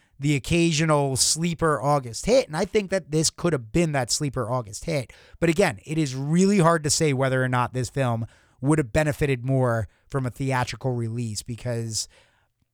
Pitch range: 120-150 Hz